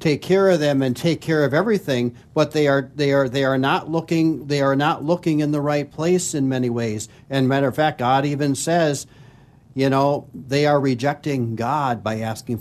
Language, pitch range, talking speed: English, 125-150 Hz, 210 wpm